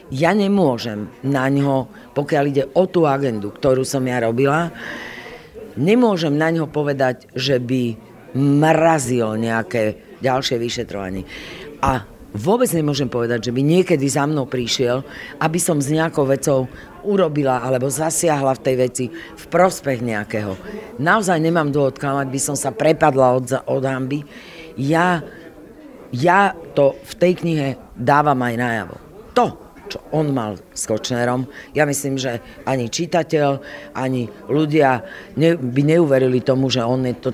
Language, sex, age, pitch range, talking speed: Slovak, female, 50-69, 125-155 Hz, 135 wpm